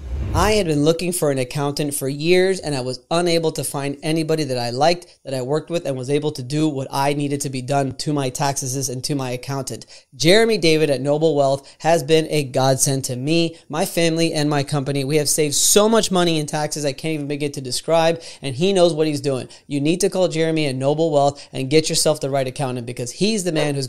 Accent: American